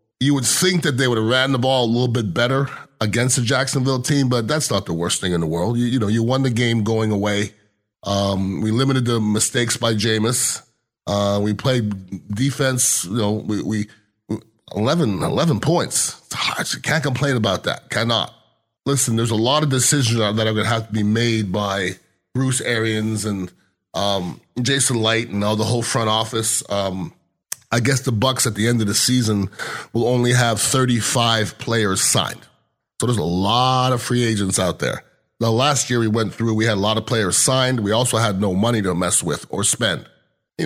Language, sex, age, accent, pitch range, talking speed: English, male, 30-49, American, 105-130 Hz, 200 wpm